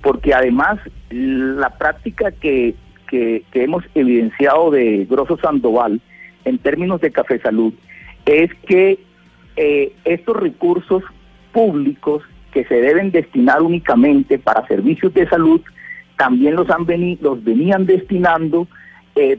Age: 40-59